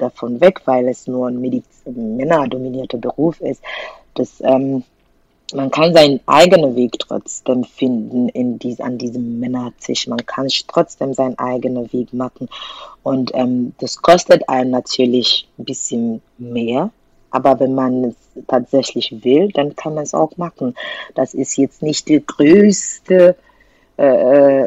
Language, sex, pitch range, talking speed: German, female, 125-155 Hz, 140 wpm